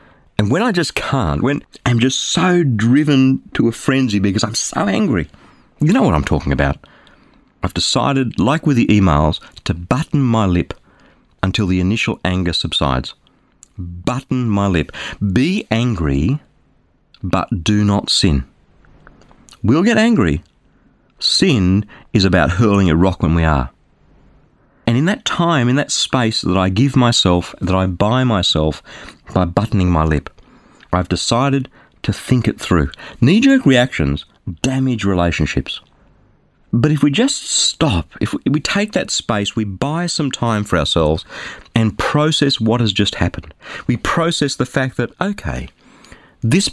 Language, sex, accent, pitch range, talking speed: English, male, Australian, 90-130 Hz, 150 wpm